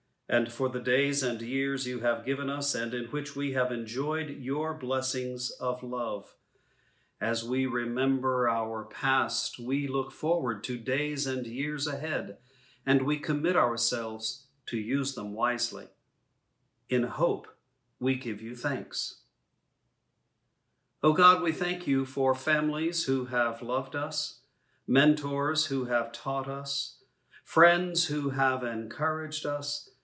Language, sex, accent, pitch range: English, male, American, 120-145 Hz